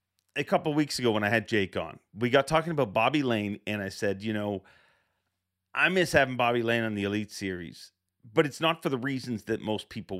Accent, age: American, 40-59